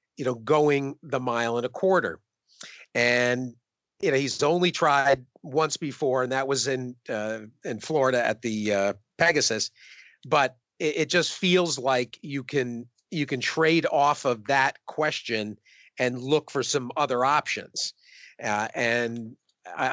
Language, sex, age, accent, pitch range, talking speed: English, male, 40-59, American, 115-155 Hz, 155 wpm